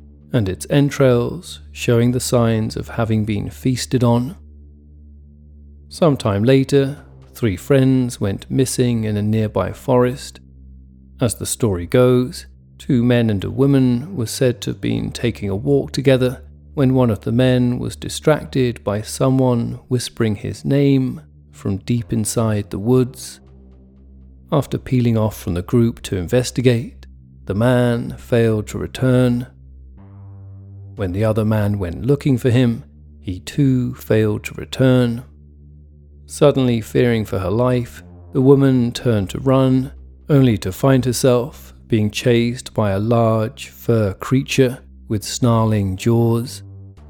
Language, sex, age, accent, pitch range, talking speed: English, male, 40-59, British, 75-125 Hz, 135 wpm